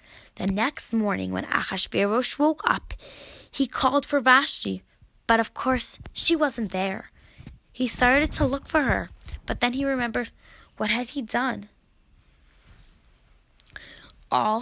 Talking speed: 130 wpm